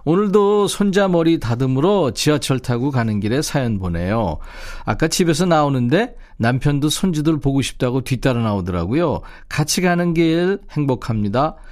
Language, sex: Korean, male